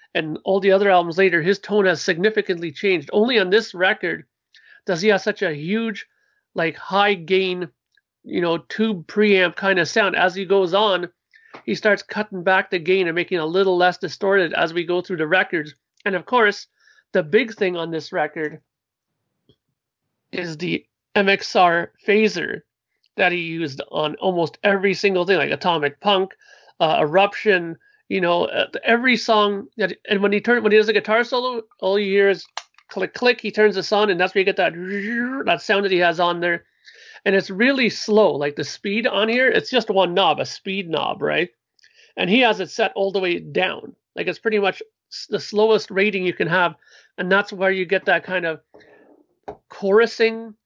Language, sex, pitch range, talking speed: English, male, 180-215 Hz, 190 wpm